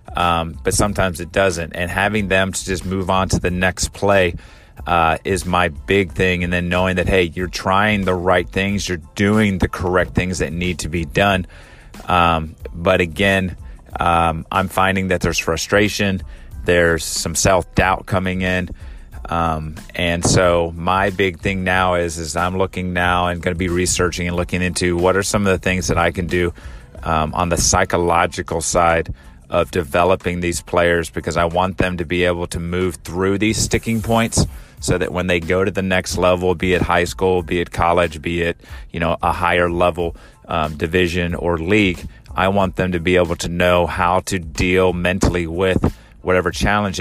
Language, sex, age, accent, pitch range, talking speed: English, male, 30-49, American, 85-95 Hz, 190 wpm